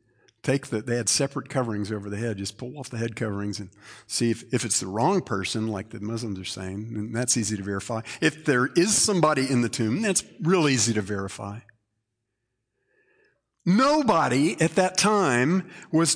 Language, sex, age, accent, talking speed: English, male, 50-69, American, 185 wpm